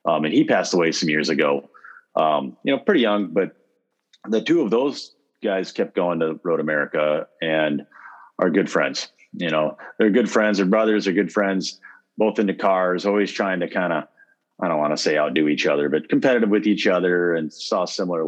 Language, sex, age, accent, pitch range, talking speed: English, male, 40-59, American, 75-100 Hz, 205 wpm